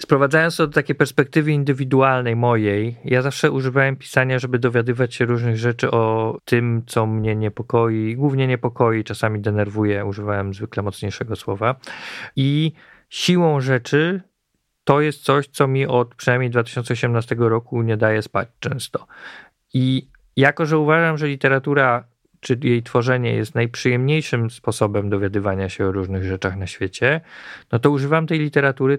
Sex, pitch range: male, 115-140 Hz